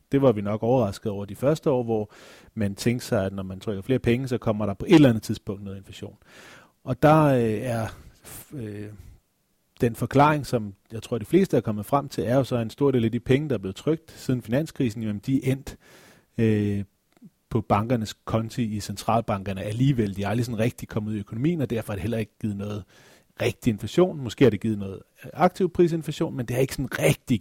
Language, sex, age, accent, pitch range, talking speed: Danish, male, 30-49, native, 105-130 Hz, 220 wpm